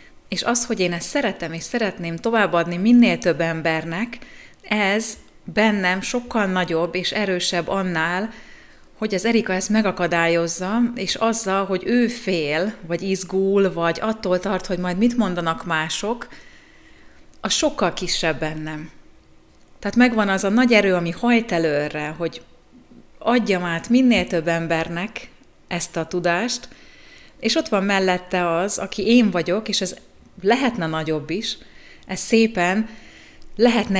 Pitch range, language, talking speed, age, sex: 170-215 Hz, Hungarian, 135 wpm, 30-49, female